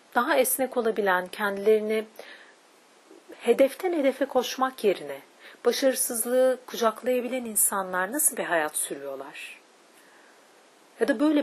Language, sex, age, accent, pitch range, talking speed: Turkish, female, 40-59, native, 200-275 Hz, 95 wpm